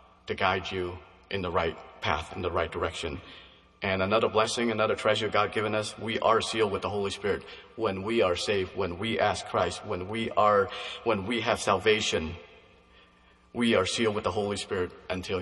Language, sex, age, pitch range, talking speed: English, male, 40-59, 95-125 Hz, 190 wpm